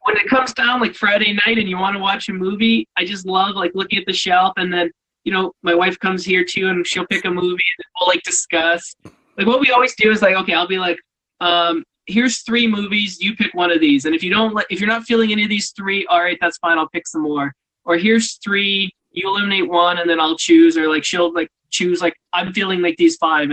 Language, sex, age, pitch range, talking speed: English, male, 20-39, 175-220 Hz, 260 wpm